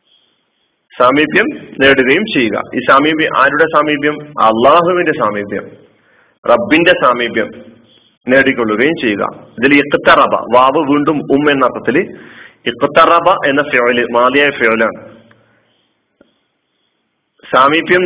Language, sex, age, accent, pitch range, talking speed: Malayalam, male, 40-59, native, 120-150 Hz, 75 wpm